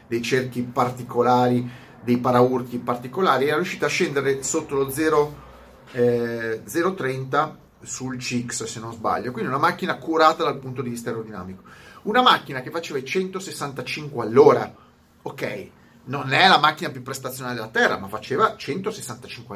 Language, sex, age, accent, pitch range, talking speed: Italian, male, 40-59, native, 120-165 Hz, 145 wpm